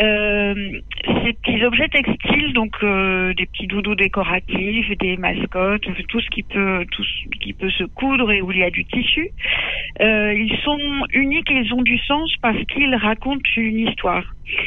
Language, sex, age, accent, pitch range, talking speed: French, female, 50-69, French, 200-245 Hz, 180 wpm